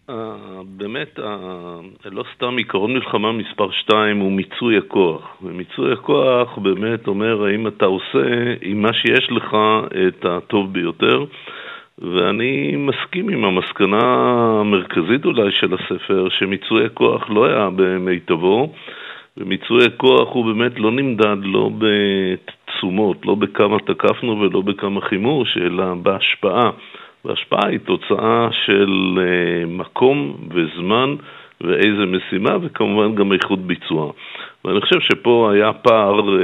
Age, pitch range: 50-69, 95-110 Hz